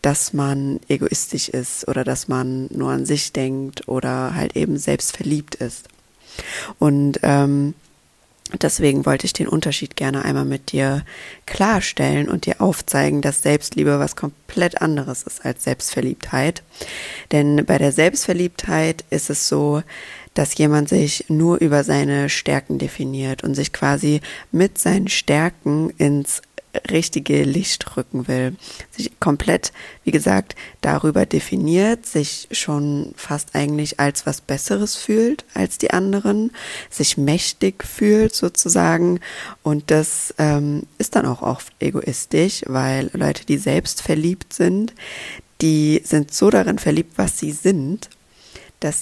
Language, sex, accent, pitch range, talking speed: German, female, German, 135-160 Hz, 135 wpm